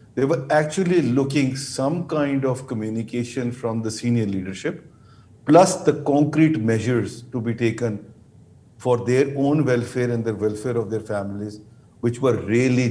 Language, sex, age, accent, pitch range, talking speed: English, male, 50-69, Indian, 110-130 Hz, 150 wpm